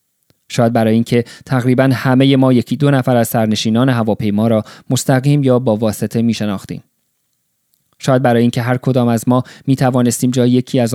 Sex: male